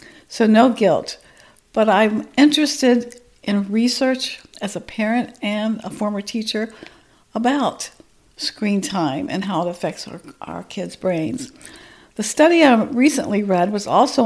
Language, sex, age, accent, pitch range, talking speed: English, female, 60-79, American, 195-250 Hz, 140 wpm